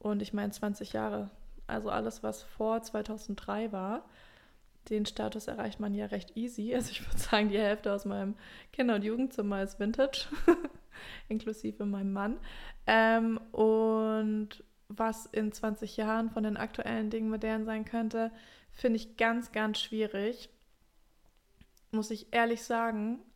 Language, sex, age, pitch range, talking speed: German, female, 20-39, 215-235 Hz, 145 wpm